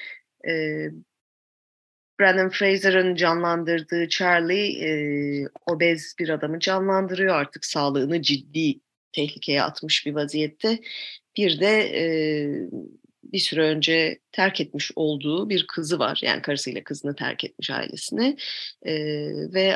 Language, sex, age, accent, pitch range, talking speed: Turkish, female, 30-49, native, 150-225 Hz, 100 wpm